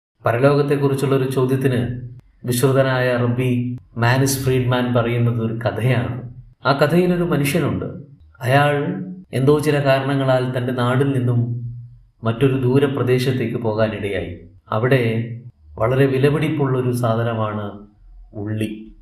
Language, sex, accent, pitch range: Malayalam, male, native, 115-140 Hz